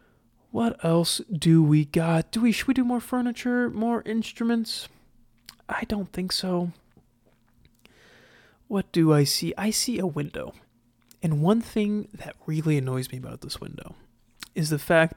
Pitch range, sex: 145-180 Hz, male